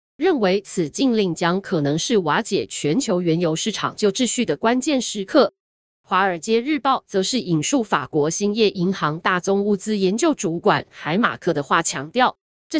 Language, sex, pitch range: Chinese, female, 175-250 Hz